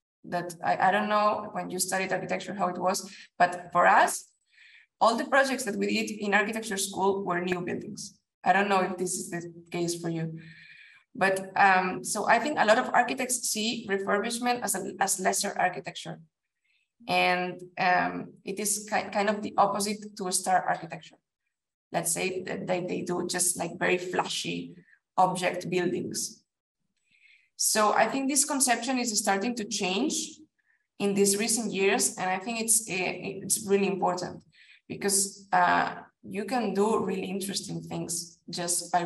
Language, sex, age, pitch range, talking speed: English, female, 20-39, 180-220 Hz, 165 wpm